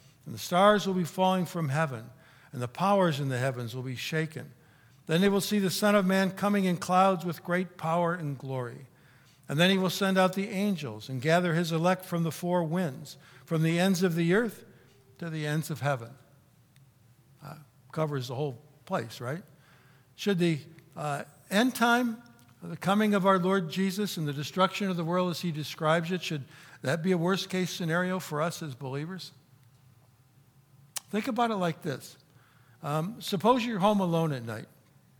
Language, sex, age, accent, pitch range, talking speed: English, male, 60-79, American, 135-185 Hz, 185 wpm